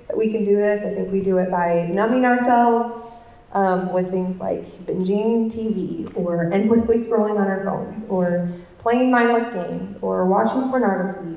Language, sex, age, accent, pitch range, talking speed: English, female, 20-39, American, 190-230 Hz, 170 wpm